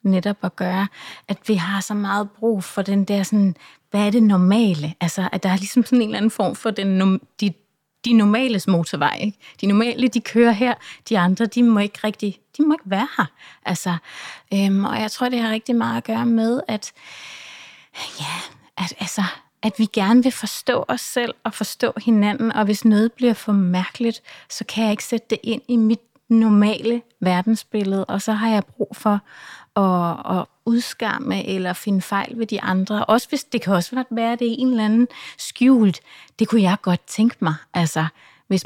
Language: Danish